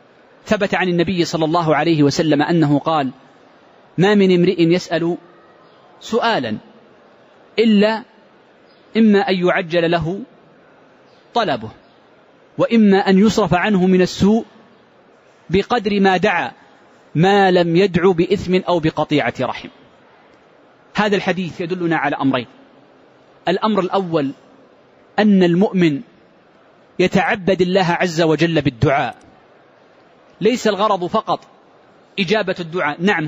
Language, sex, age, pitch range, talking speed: Arabic, male, 30-49, 170-205 Hz, 100 wpm